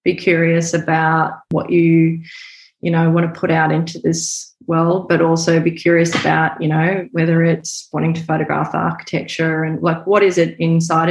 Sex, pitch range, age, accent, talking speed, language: female, 165-190 Hz, 20-39, Australian, 180 wpm, English